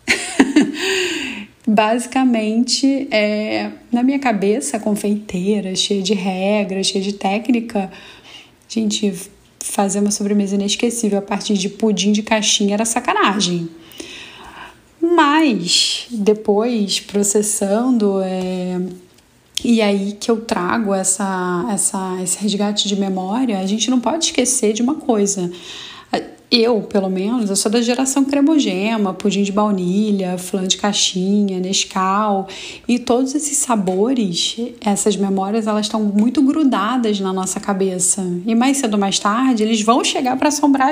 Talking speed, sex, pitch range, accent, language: 120 wpm, female, 195-245 Hz, Brazilian, Portuguese